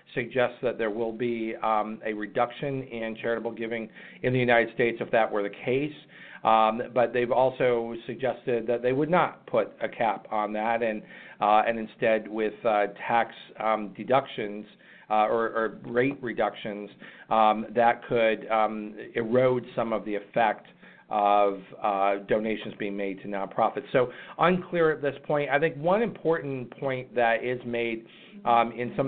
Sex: male